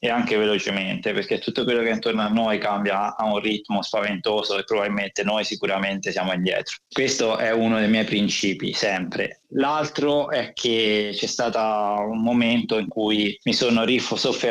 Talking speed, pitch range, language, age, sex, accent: 170 wpm, 105-125 Hz, Italian, 20-39, male, native